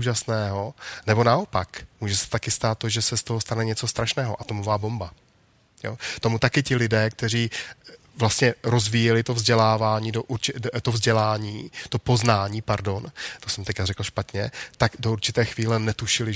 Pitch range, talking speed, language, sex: 110-125 Hz, 160 wpm, Czech, male